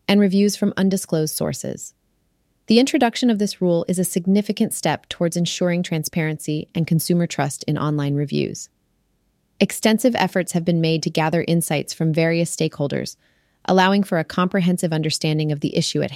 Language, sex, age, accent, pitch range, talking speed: English, female, 30-49, American, 150-185 Hz, 160 wpm